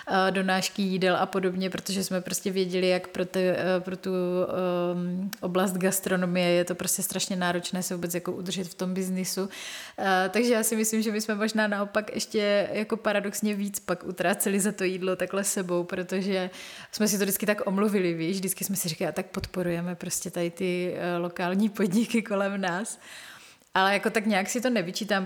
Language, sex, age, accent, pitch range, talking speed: Czech, female, 30-49, native, 180-195 Hz, 180 wpm